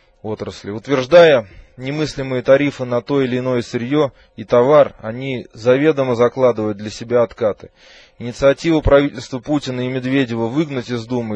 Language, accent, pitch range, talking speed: Russian, native, 110-135 Hz, 125 wpm